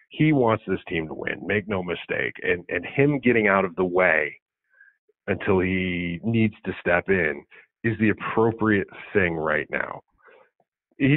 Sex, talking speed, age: male, 160 wpm, 40-59